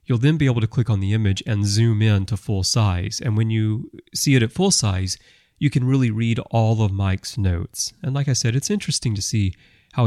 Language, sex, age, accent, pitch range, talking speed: English, male, 30-49, American, 100-120 Hz, 240 wpm